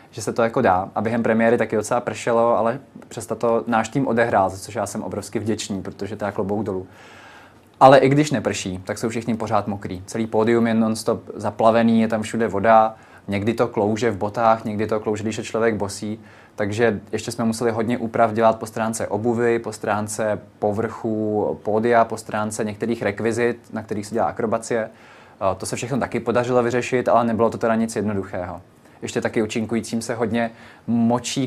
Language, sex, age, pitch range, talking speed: Czech, male, 20-39, 105-115 Hz, 185 wpm